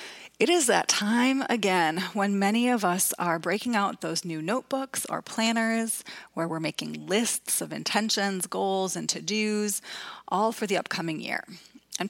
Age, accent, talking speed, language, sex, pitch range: 30-49, American, 160 wpm, English, female, 165-225 Hz